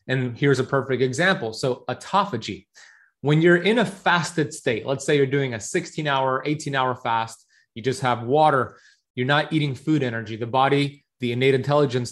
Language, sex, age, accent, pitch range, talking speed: English, male, 30-49, American, 125-150 Hz, 185 wpm